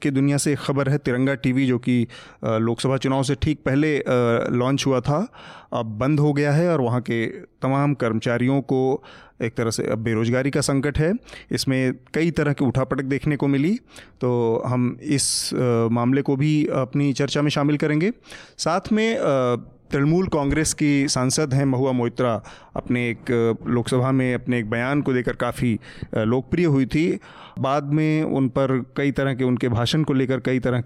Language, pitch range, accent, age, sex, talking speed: Hindi, 125-145 Hz, native, 30-49, male, 175 wpm